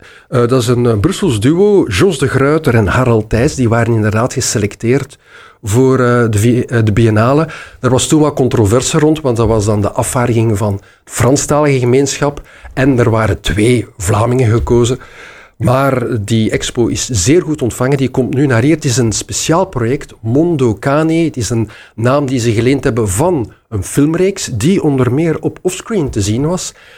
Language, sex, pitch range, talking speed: Dutch, male, 115-145 Hz, 180 wpm